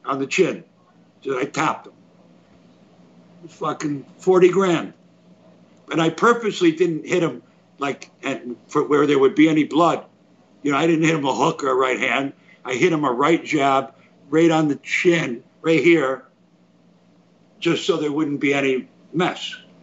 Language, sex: English, male